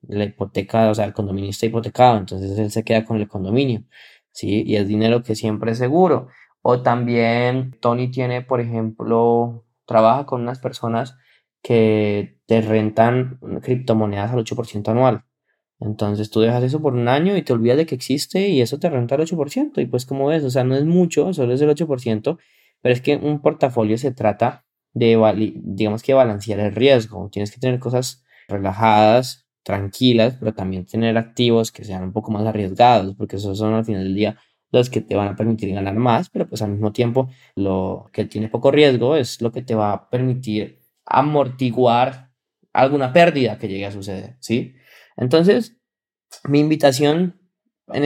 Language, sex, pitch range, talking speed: Spanish, male, 110-135 Hz, 180 wpm